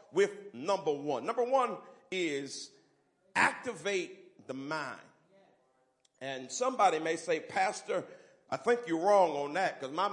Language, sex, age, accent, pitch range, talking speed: English, male, 40-59, American, 155-210 Hz, 130 wpm